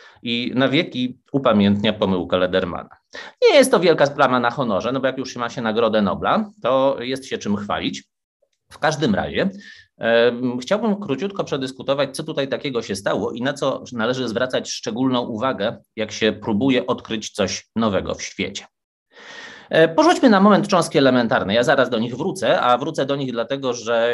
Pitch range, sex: 125-185 Hz, male